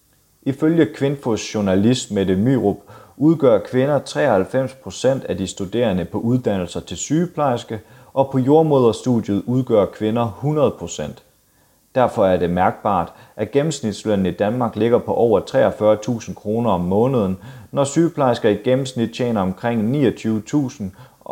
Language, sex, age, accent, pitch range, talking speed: Danish, male, 30-49, native, 95-125 Hz, 120 wpm